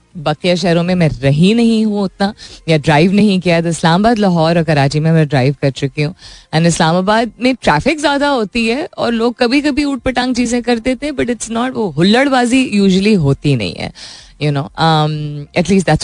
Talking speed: 190 wpm